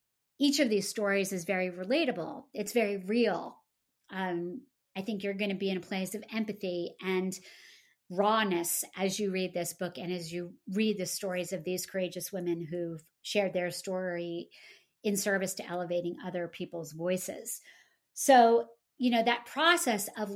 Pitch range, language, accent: 180-225 Hz, English, American